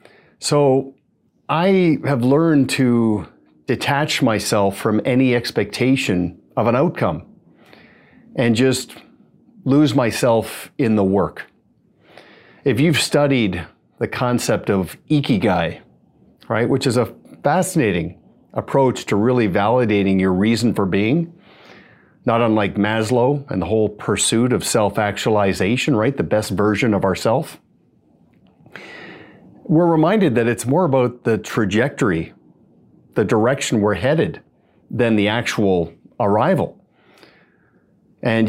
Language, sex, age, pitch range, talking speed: English, male, 50-69, 105-135 Hz, 110 wpm